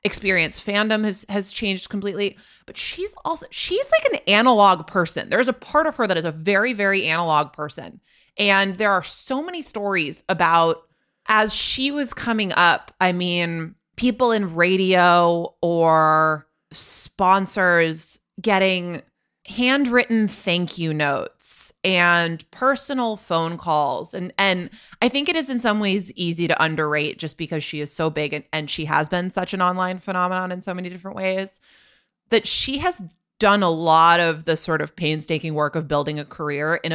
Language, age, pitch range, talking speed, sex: English, 20-39, 155-200 Hz, 165 wpm, female